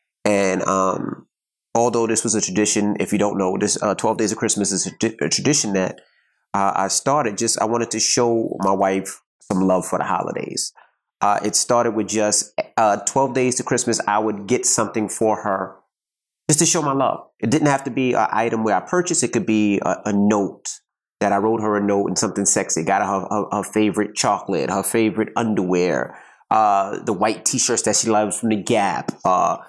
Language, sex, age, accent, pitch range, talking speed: English, male, 30-49, American, 100-125 Hz, 210 wpm